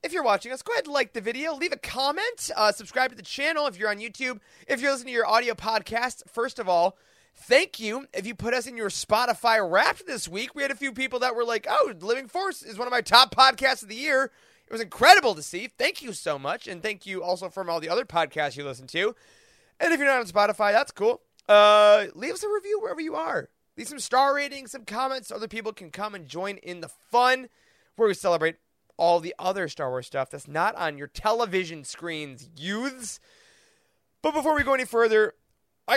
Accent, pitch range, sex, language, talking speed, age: American, 175-265 Hz, male, English, 235 wpm, 30-49